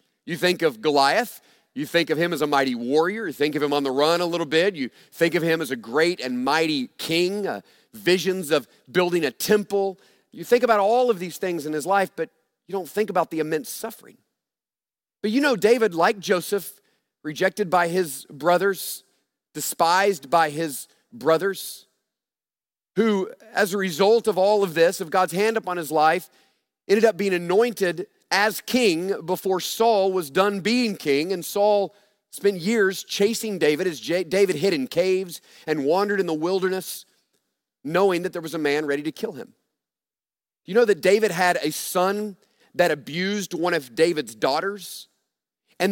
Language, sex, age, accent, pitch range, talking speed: English, male, 40-59, American, 165-205 Hz, 180 wpm